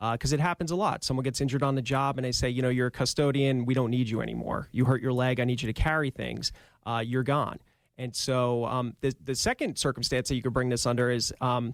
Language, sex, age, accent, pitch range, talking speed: English, male, 30-49, American, 120-140 Hz, 270 wpm